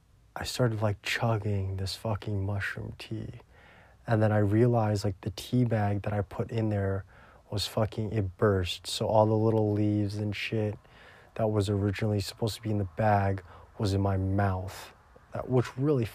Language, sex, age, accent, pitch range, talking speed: English, male, 20-39, American, 100-115 Hz, 180 wpm